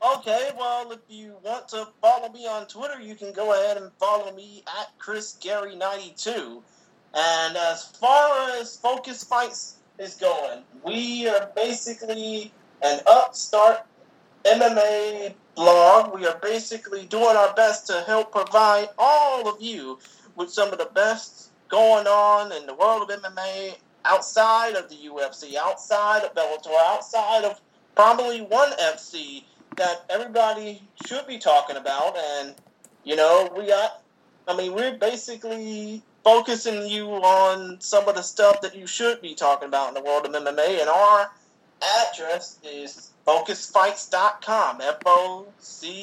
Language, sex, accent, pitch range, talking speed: English, male, American, 180-230 Hz, 145 wpm